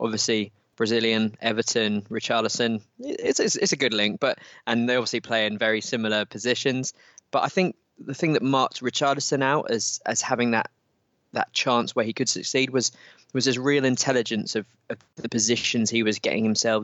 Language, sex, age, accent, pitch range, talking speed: English, male, 20-39, British, 110-130 Hz, 180 wpm